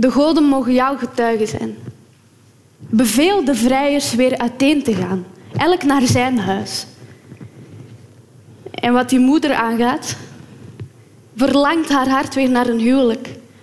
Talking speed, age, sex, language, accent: 130 wpm, 20-39, female, Dutch, Dutch